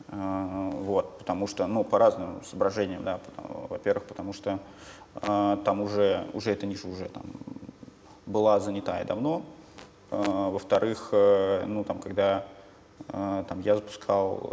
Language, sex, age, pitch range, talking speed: Russian, male, 20-39, 95-110 Hz, 135 wpm